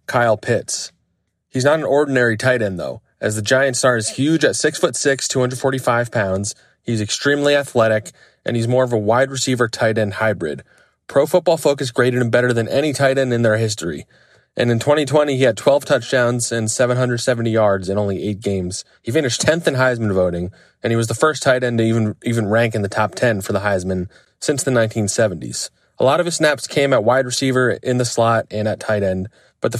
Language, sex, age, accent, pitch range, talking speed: English, male, 20-39, American, 110-130 Hz, 215 wpm